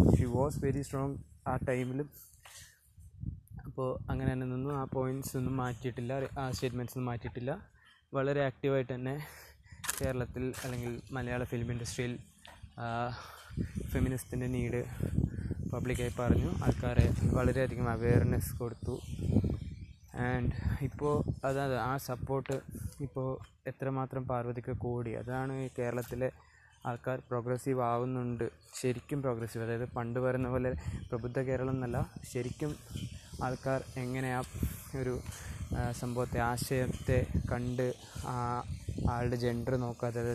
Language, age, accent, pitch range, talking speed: Malayalam, 20-39, native, 120-130 Hz, 105 wpm